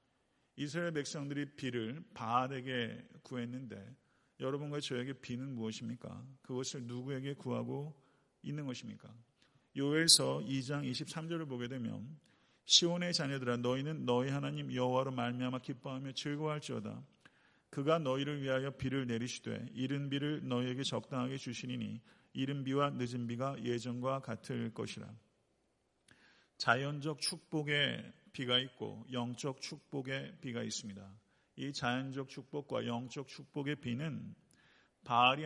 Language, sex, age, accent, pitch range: Korean, male, 40-59, native, 125-150 Hz